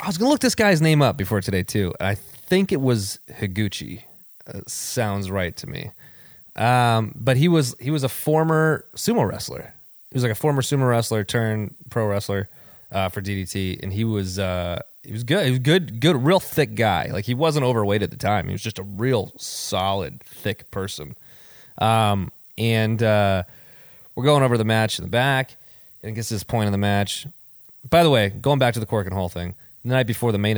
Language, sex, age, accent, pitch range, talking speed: English, male, 20-39, American, 100-130 Hz, 210 wpm